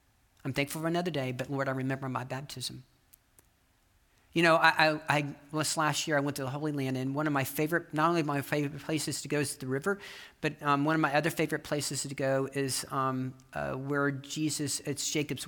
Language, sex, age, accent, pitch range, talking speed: English, male, 40-59, American, 140-165 Hz, 220 wpm